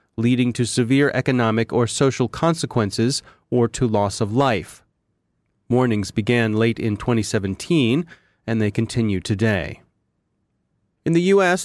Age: 30-49